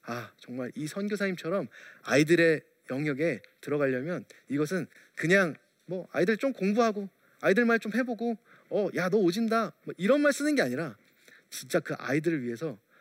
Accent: native